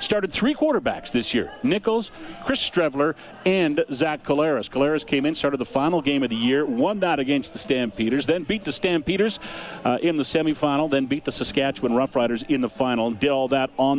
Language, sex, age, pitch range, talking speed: English, male, 50-69, 130-185 Hz, 200 wpm